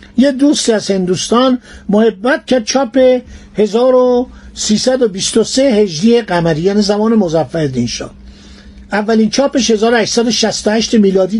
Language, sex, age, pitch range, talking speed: Persian, male, 50-69, 190-245 Hz, 95 wpm